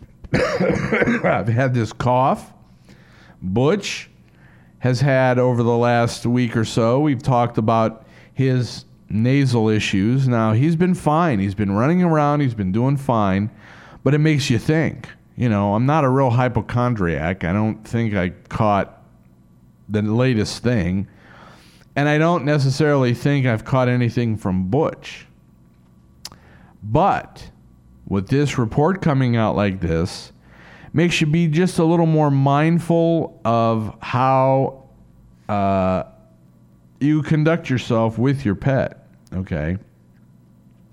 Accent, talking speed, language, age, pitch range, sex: American, 130 wpm, English, 50-69, 95-145 Hz, male